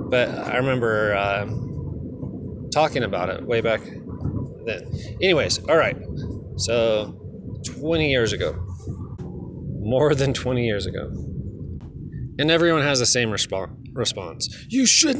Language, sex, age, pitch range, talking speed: English, male, 30-49, 115-145 Hz, 120 wpm